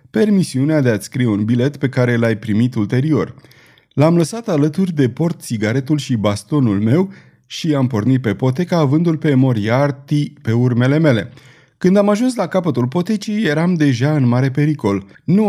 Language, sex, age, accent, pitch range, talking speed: Romanian, male, 30-49, native, 115-155 Hz, 165 wpm